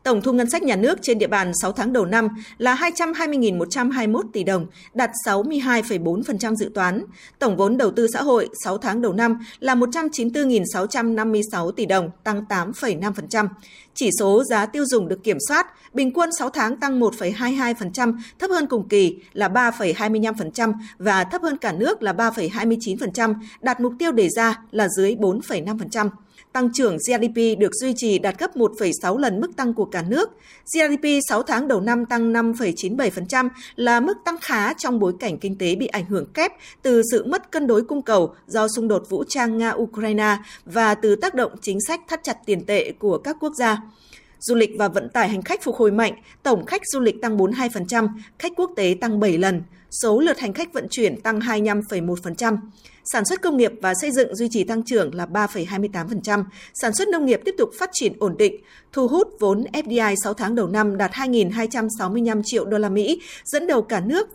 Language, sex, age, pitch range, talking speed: Vietnamese, female, 20-39, 205-255 Hz, 190 wpm